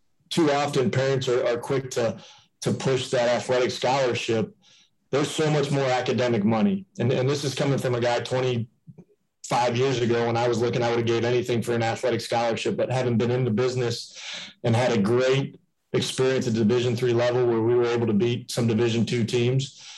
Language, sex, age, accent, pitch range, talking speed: English, male, 30-49, American, 115-135 Hz, 200 wpm